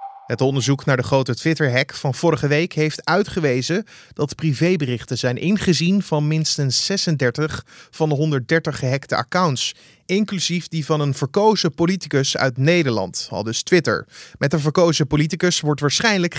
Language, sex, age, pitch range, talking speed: Dutch, male, 30-49, 130-165 Hz, 145 wpm